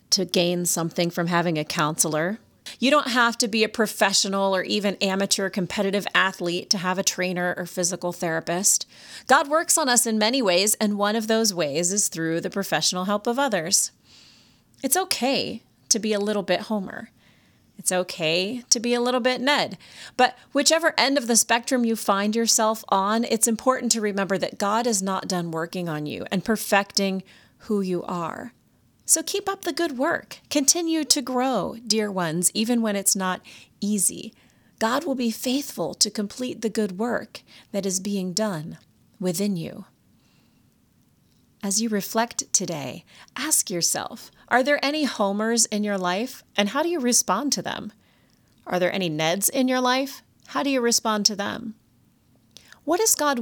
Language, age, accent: English, 30-49, American